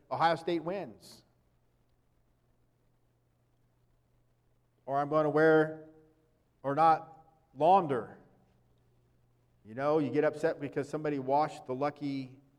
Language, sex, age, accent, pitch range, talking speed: English, male, 50-69, American, 135-215 Hz, 95 wpm